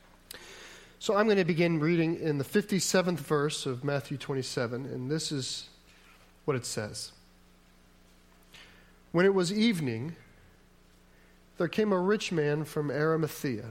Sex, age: male, 40-59